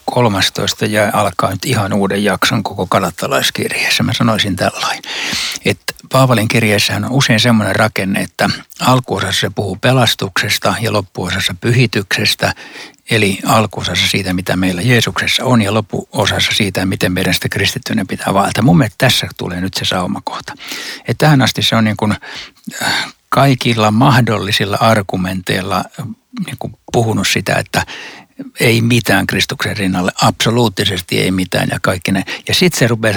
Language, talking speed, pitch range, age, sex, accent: Finnish, 140 wpm, 100-130 Hz, 60-79, male, native